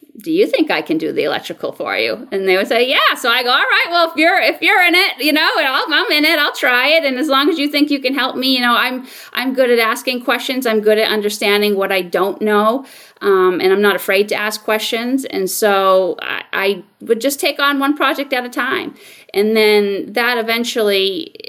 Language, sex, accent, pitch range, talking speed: English, female, American, 195-290 Hz, 240 wpm